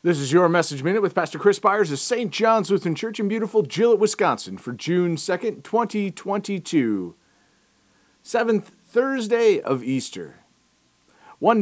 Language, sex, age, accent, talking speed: English, male, 40-59, American, 140 wpm